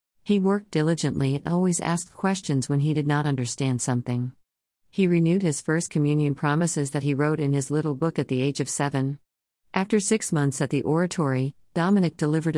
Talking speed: 185 wpm